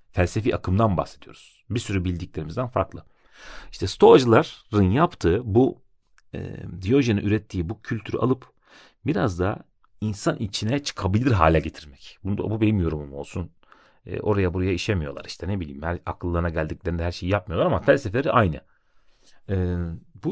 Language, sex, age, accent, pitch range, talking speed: Turkish, male, 40-59, native, 90-115 Hz, 140 wpm